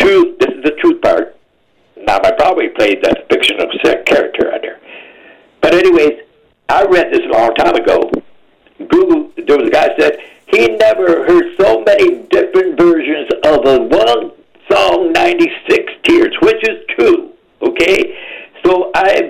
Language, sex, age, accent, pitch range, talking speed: English, male, 60-79, American, 335-390 Hz, 150 wpm